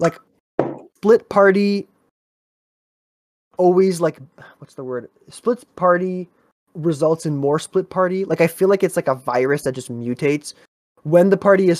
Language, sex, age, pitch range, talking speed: English, male, 20-39, 140-180 Hz, 155 wpm